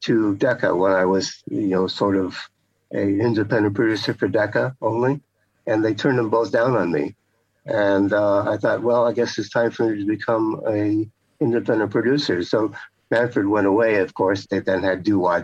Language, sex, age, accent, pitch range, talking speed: English, male, 60-79, American, 95-110 Hz, 195 wpm